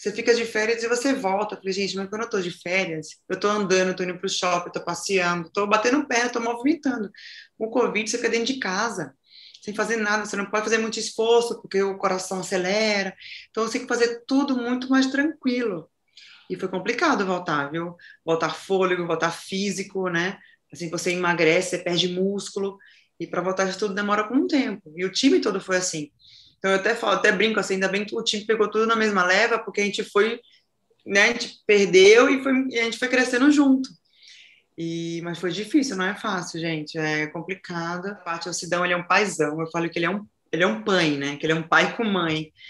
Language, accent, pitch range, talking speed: Portuguese, Brazilian, 175-225 Hz, 220 wpm